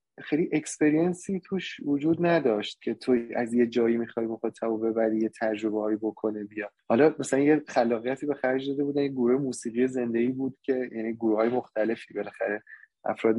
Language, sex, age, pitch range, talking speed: Persian, male, 20-39, 110-145 Hz, 165 wpm